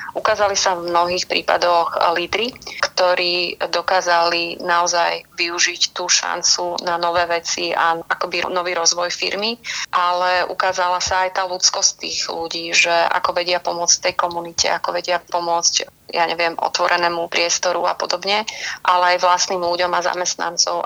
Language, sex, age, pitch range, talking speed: Slovak, female, 30-49, 175-185 Hz, 140 wpm